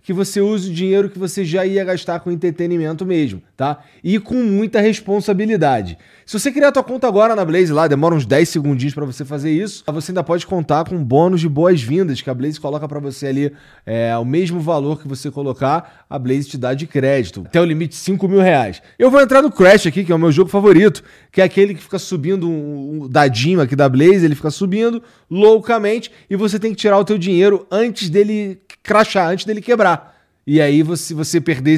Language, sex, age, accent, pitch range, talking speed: Portuguese, male, 20-39, Brazilian, 155-205 Hz, 220 wpm